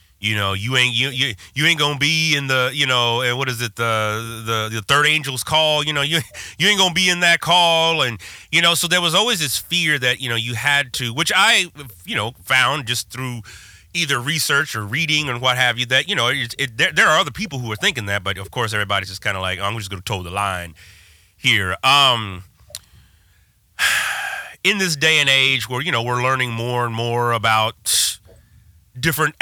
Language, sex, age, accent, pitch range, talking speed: English, male, 30-49, American, 110-145 Hz, 225 wpm